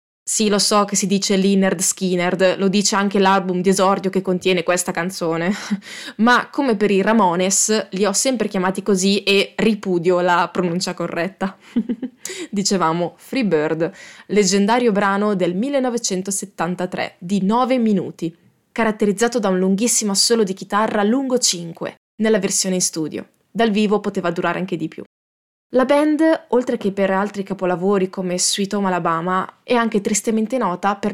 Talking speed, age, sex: 150 wpm, 20-39, female